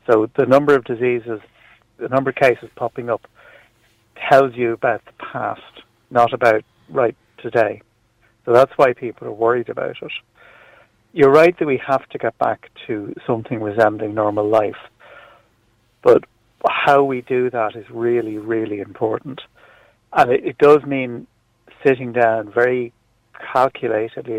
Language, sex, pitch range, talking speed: English, male, 110-125 Hz, 145 wpm